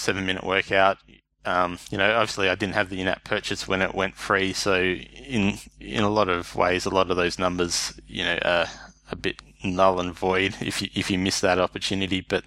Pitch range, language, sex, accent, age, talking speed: 90-100 Hz, English, male, Australian, 20-39, 210 wpm